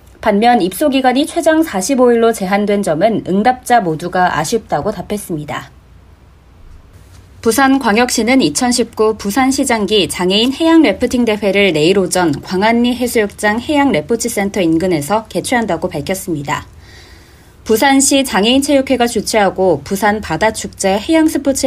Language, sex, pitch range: Korean, female, 175-255 Hz